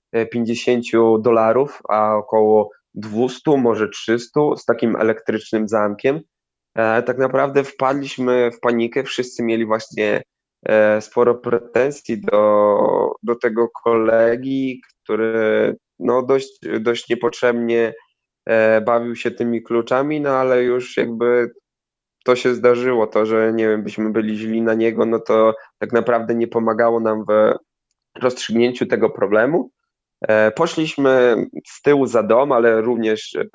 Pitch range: 115-130 Hz